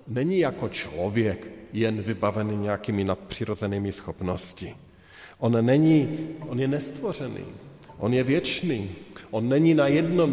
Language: Slovak